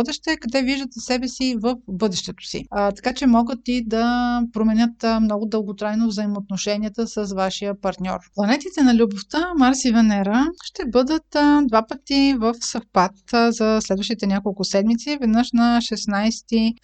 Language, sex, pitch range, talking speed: Bulgarian, female, 210-265 Hz, 150 wpm